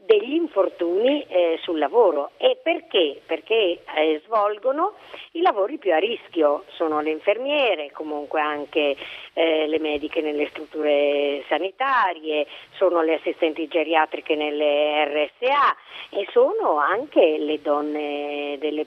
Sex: female